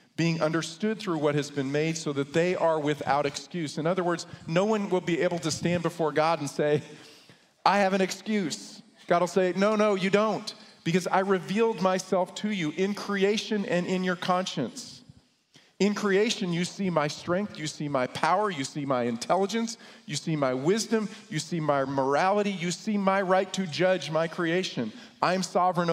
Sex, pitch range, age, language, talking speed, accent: male, 155-195 Hz, 40-59, English, 190 wpm, American